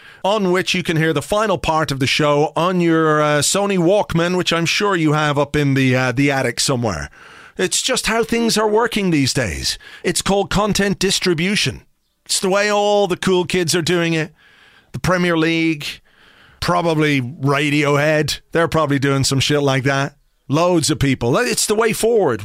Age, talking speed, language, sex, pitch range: 40-59, 180 wpm, English, male, 145-180 Hz